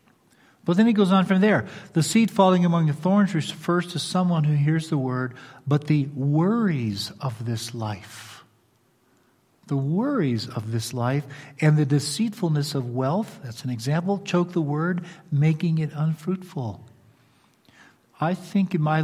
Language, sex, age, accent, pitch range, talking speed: English, male, 50-69, American, 120-155 Hz, 155 wpm